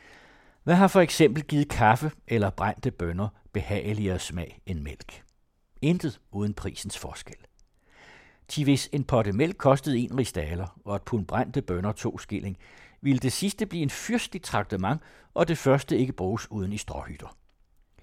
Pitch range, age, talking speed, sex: 95-140 Hz, 60-79, 155 wpm, male